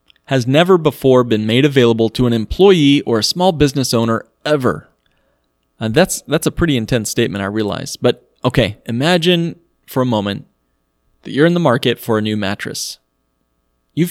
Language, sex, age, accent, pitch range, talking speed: English, male, 30-49, American, 105-150 Hz, 170 wpm